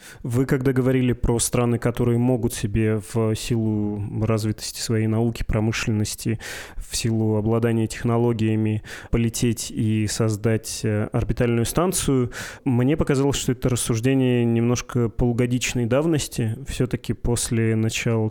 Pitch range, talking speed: 110-130 Hz, 110 wpm